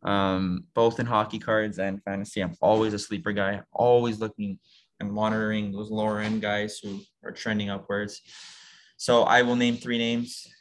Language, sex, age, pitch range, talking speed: English, male, 20-39, 100-120 Hz, 170 wpm